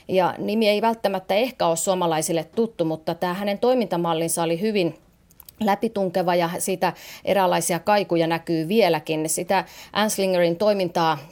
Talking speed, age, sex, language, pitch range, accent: 125 wpm, 30-49, female, Finnish, 160-195 Hz, native